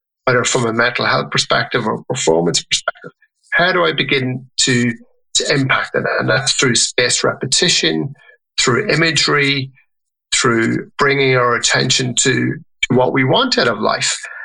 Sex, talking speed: male, 150 wpm